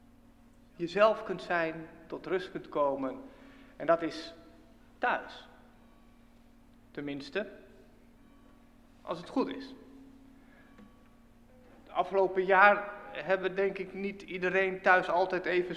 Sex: male